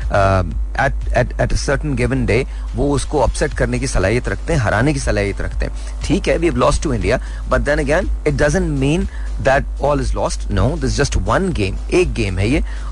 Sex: male